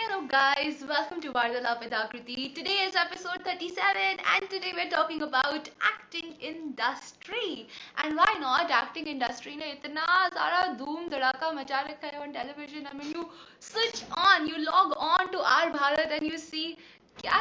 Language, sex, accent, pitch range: Hindi, female, native, 245-310 Hz